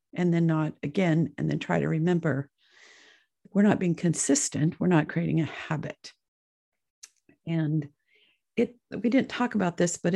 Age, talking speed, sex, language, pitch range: 50-69, 155 wpm, female, English, 170-235 Hz